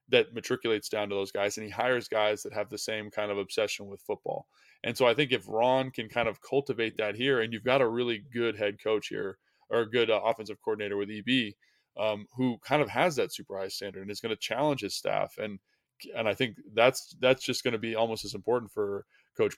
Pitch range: 105-130 Hz